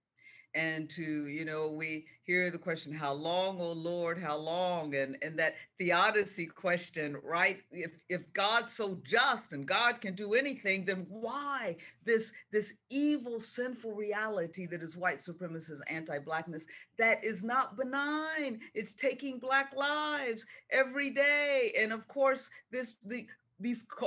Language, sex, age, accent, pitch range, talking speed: English, female, 50-69, American, 175-255 Hz, 145 wpm